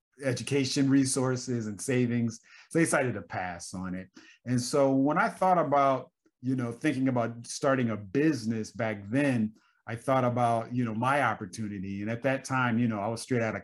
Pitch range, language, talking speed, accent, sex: 100-130 Hz, English, 195 wpm, American, male